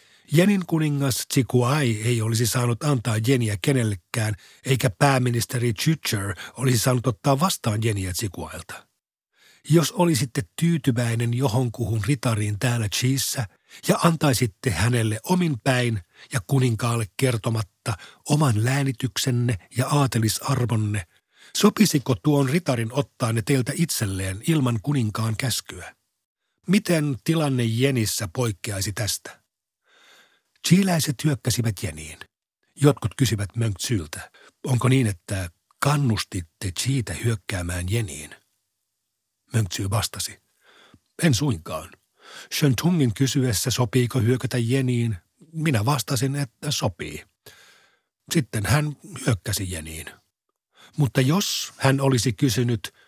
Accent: native